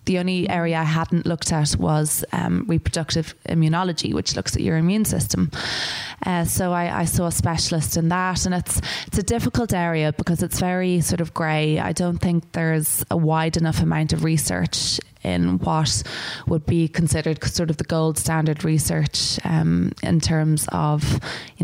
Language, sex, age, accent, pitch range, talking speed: English, female, 20-39, Irish, 155-170 Hz, 175 wpm